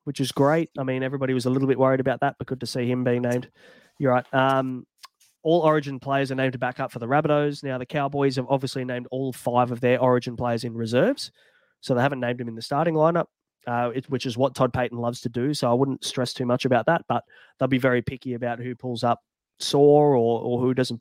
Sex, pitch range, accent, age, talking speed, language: male, 120-140 Hz, Australian, 20-39, 255 wpm, English